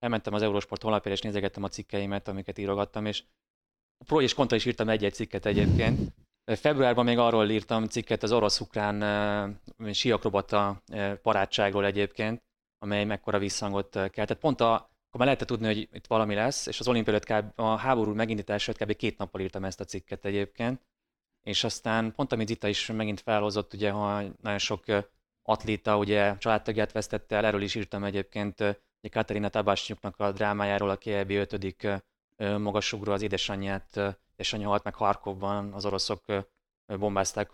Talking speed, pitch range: 160 wpm, 100-110 Hz